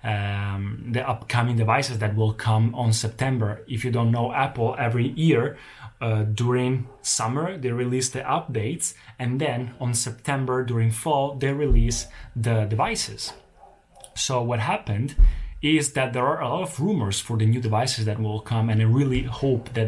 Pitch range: 110-125 Hz